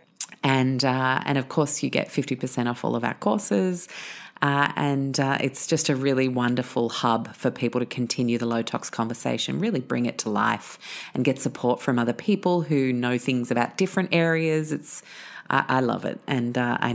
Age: 30-49